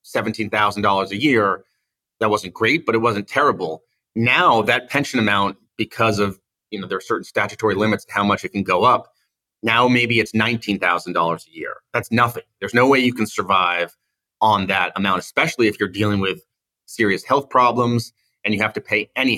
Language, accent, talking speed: English, American, 185 wpm